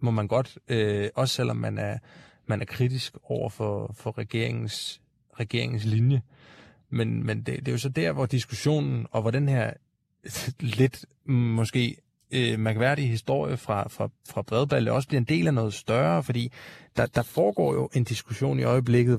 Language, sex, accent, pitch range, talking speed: Danish, male, native, 115-135 Hz, 175 wpm